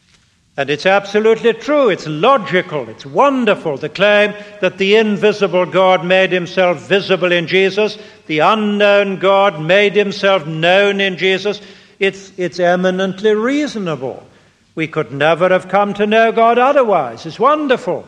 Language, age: English, 60-79